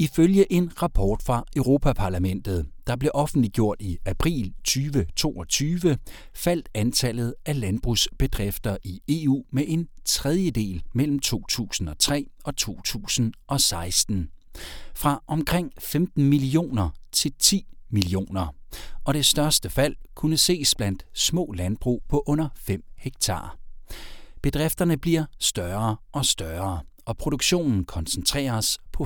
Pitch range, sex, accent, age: 95-145 Hz, male, native, 60-79